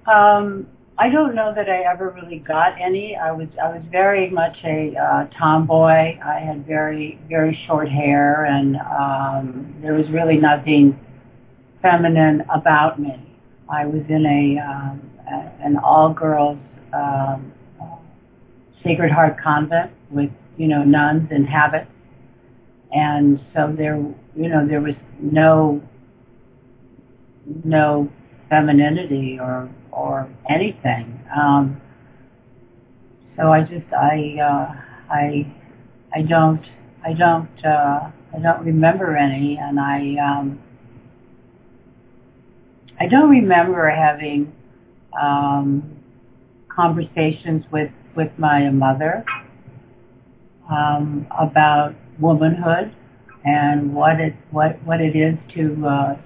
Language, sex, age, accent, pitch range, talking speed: English, female, 60-79, American, 130-155 Hz, 115 wpm